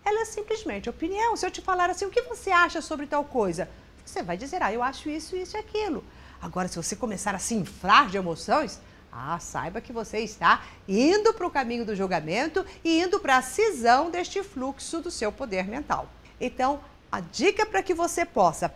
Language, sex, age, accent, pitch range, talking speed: Portuguese, female, 50-69, Brazilian, 210-355 Hz, 205 wpm